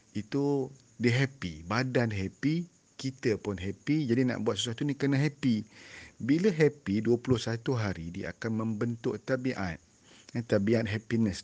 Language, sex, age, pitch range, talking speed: Malay, male, 40-59, 95-125 Hz, 135 wpm